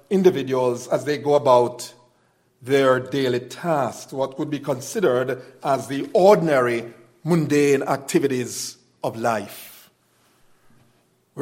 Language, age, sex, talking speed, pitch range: English, 50-69, male, 105 wpm, 135-180 Hz